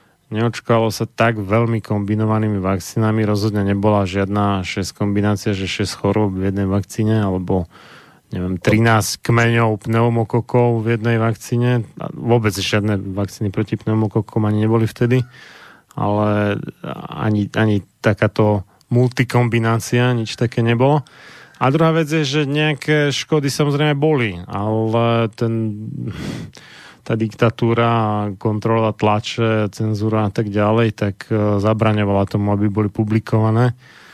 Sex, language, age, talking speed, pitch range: male, Slovak, 30-49, 115 wpm, 105-125 Hz